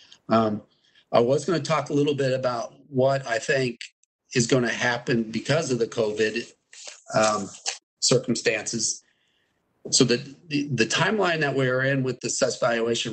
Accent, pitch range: American, 110-135 Hz